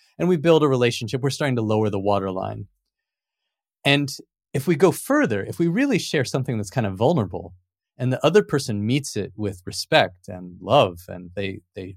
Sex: male